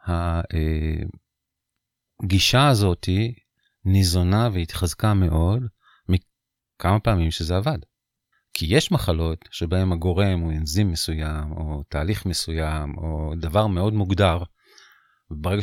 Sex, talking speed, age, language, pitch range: male, 95 wpm, 40-59, Hebrew, 90-110 Hz